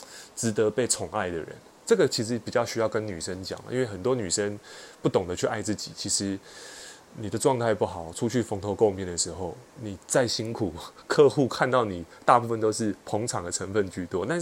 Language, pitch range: Chinese, 105-125 Hz